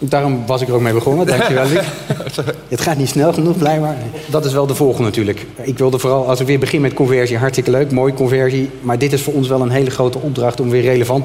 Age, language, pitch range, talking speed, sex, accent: 30-49, Dutch, 120-140 Hz, 250 wpm, male, Dutch